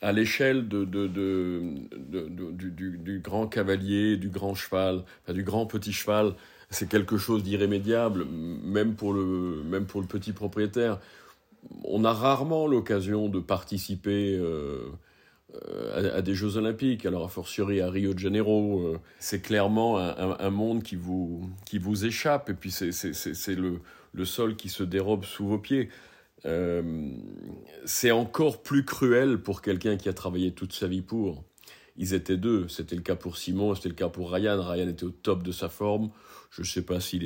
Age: 50-69